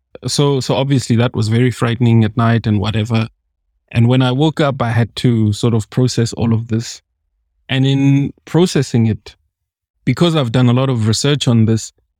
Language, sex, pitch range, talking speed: English, male, 90-130 Hz, 185 wpm